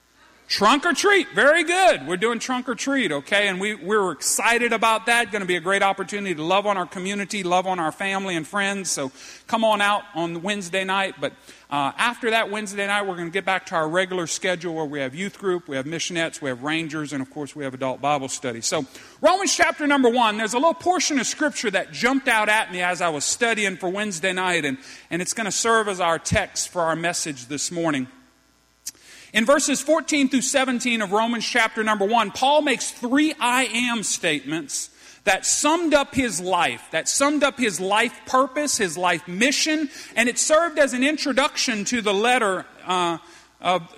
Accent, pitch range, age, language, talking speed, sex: American, 180-255 Hz, 40-59, English, 210 wpm, male